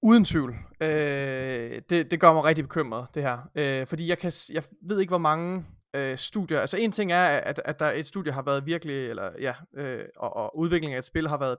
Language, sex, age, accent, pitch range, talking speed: Danish, male, 20-39, native, 140-165 Hz, 235 wpm